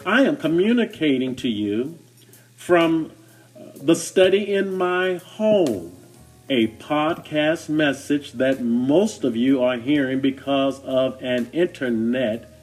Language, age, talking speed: English, 50-69, 115 wpm